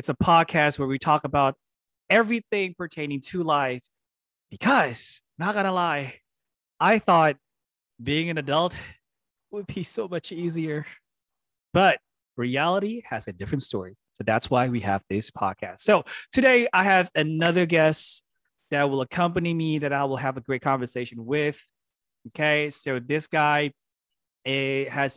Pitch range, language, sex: 125-155 Hz, English, male